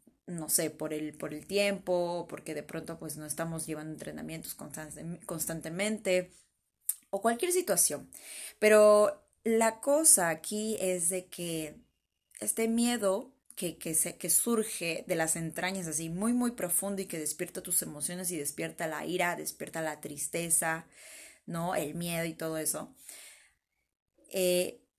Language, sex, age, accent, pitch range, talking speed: Spanish, female, 20-39, Mexican, 160-200 Hz, 145 wpm